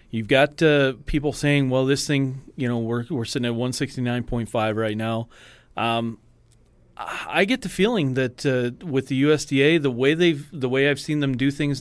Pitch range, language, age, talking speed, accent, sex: 120-145 Hz, English, 40-59, 210 wpm, American, male